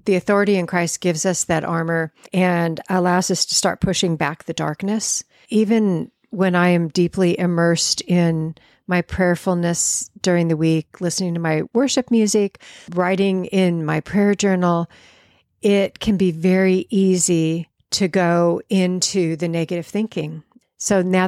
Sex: female